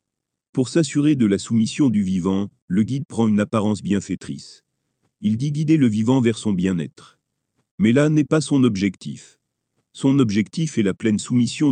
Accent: French